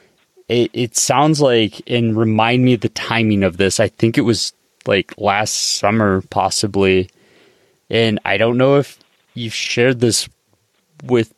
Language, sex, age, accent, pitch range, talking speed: English, male, 20-39, American, 105-120 Hz, 155 wpm